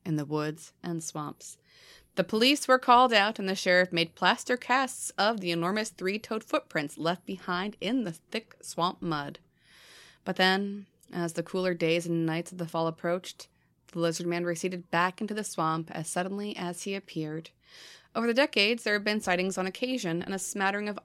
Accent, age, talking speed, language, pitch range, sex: American, 30-49, 190 wpm, English, 165-210 Hz, female